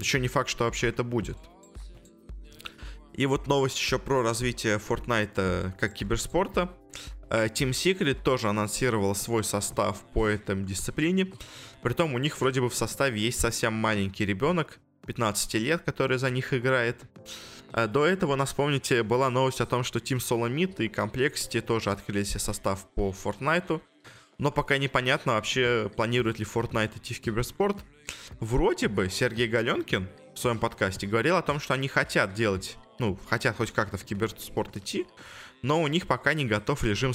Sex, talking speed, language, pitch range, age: male, 165 wpm, Russian, 105-130 Hz, 20-39